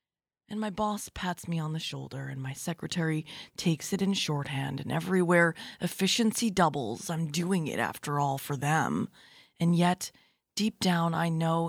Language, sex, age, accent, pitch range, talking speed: English, female, 20-39, American, 150-195 Hz, 165 wpm